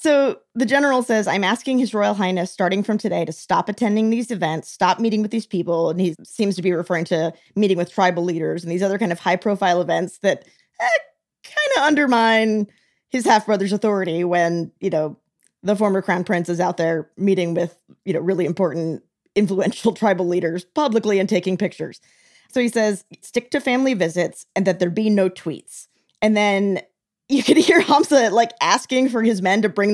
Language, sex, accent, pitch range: English, female, American, 190-270 Hz